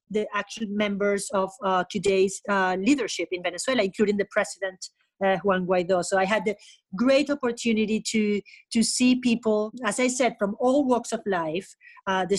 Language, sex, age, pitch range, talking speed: English, female, 40-59, 190-225 Hz, 175 wpm